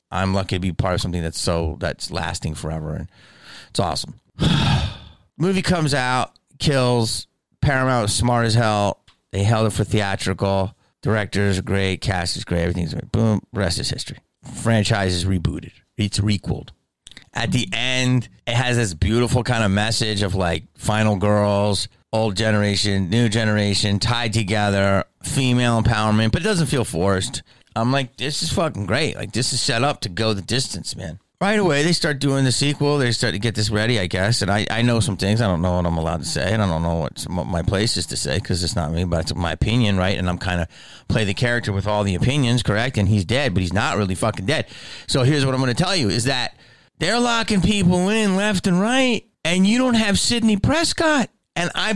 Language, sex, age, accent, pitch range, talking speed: English, male, 30-49, American, 95-145 Hz, 210 wpm